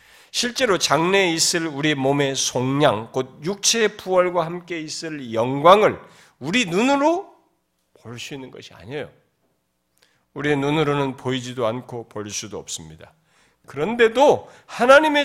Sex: male